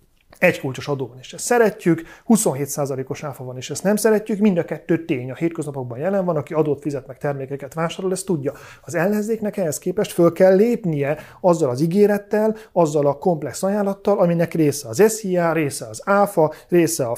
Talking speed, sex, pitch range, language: 185 wpm, male, 145-185 Hz, Hungarian